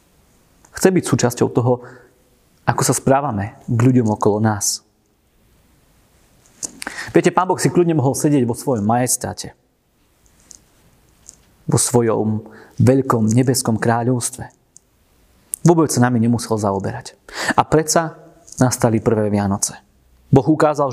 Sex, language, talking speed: male, Slovak, 110 wpm